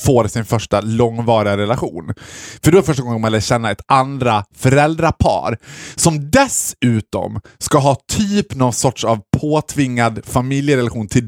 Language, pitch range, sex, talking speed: Swedish, 105-135 Hz, male, 145 wpm